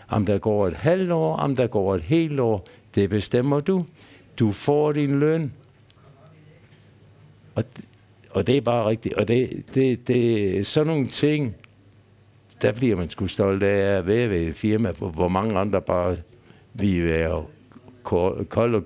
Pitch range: 95-120 Hz